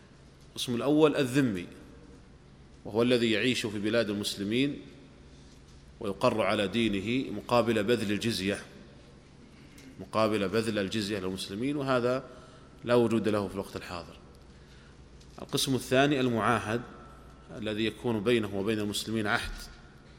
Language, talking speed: Arabic, 105 wpm